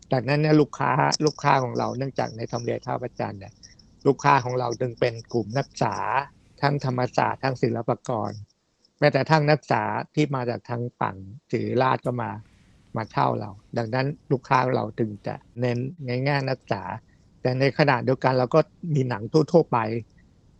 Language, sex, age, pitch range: Thai, male, 60-79, 110-135 Hz